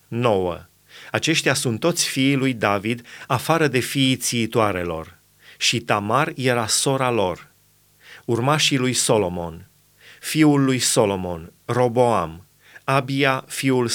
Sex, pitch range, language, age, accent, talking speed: male, 115-135 Hz, Romanian, 30-49, native, 105 wpm